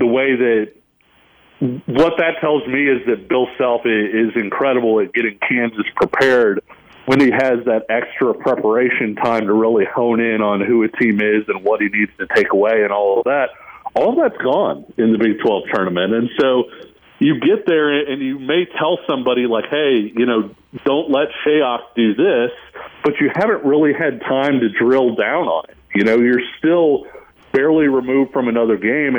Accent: American